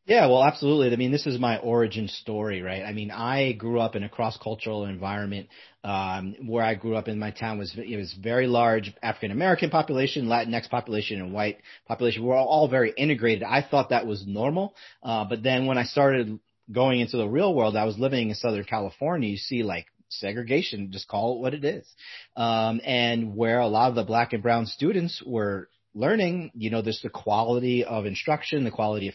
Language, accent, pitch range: English, American, 105-125 Hz